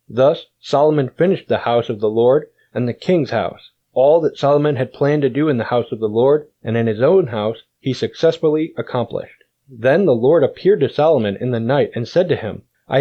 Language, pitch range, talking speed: English, 120-155 Hz, 215 wpm